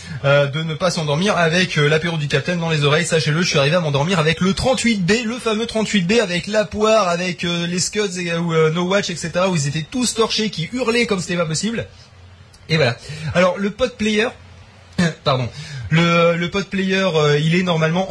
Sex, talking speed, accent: male, 210 wpm, French